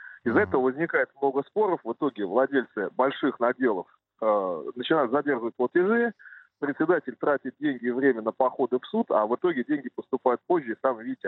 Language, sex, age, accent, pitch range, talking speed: Russian, male, 20-39, native, 125-190 Hz, 170 wpm